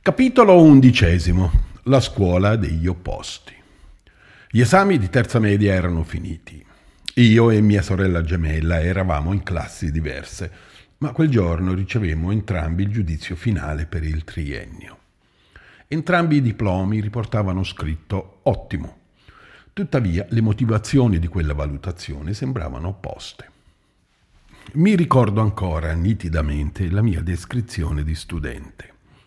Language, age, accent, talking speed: Italian, 50-69, native, 115 wpm